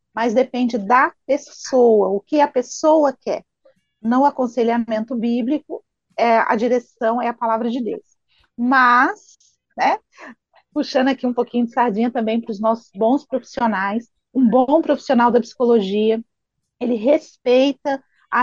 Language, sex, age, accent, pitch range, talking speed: Portuguese, female, 40-59, Brazilian, 235-290 Hz, 135 wpm